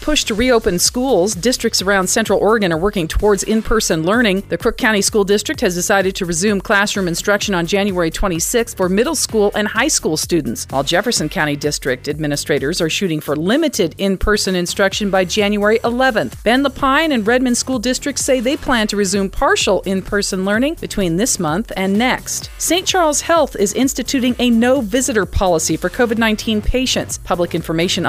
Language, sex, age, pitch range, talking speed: English, female, 40-59, 180-245 Hz, 170 wpm